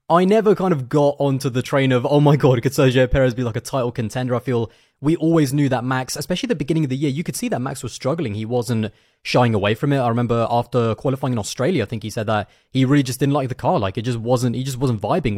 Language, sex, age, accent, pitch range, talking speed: English, male, 20-39, British, 120-145 Hz, 285 wpm